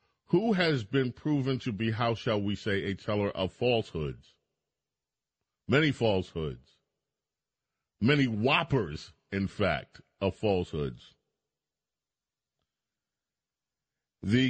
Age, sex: 40-59, male